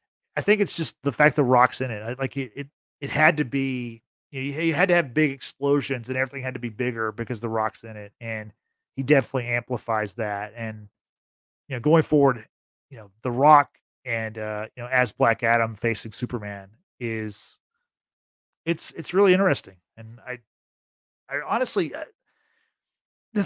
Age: 30-49